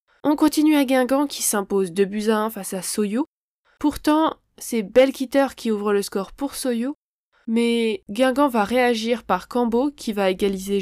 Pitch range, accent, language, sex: 210-260 Hz, French, French, female